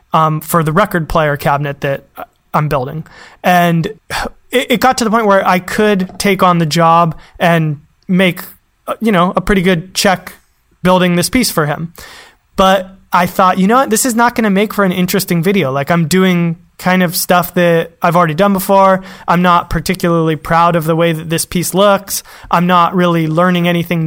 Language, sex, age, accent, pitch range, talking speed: English, male, 20-39, American, 165-190 Hz, 195 wpm